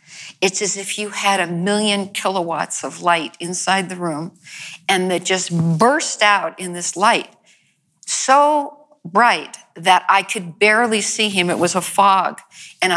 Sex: female